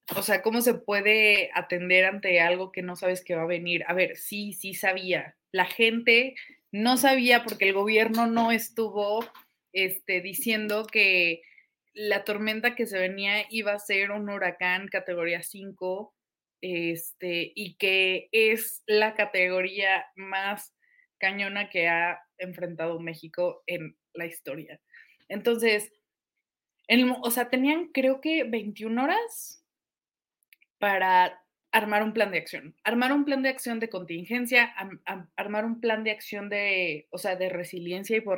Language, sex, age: Spanish, female, 20-39